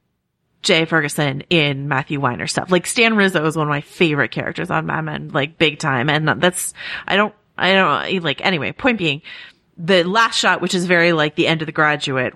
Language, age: English, 30-49